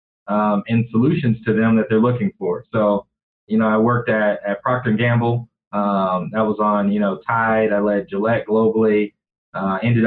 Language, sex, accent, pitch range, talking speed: English, male, American, 110-120 Hz, 190 wpm